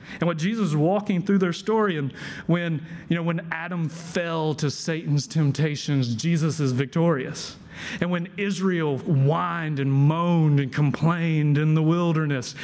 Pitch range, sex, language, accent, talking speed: 135-175 Hz, male, English, American, 150 wpm